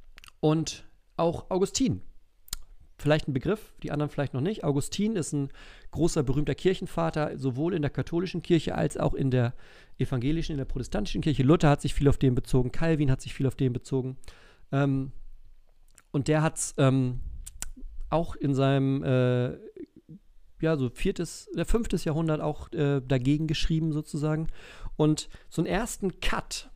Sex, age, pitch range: male, 40-59, 130-165 Hz